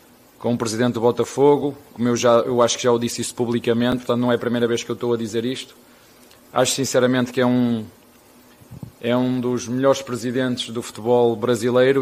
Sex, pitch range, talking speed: male, 120-125 Hz, 205 wpm